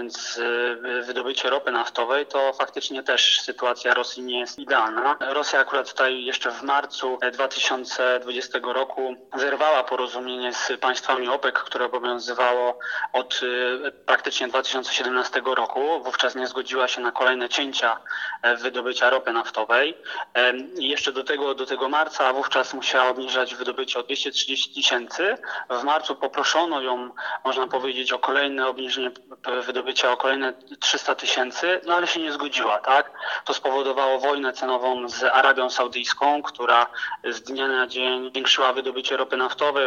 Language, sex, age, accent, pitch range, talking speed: Polish, male, 30-49, native, 125-135 Hz, 135 wpm